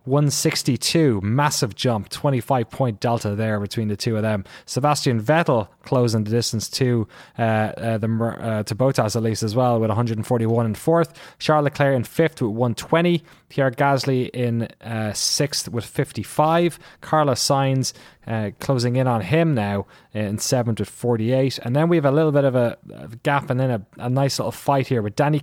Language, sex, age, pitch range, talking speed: English, male, 20-39, 115-145 Hz, 180 wpm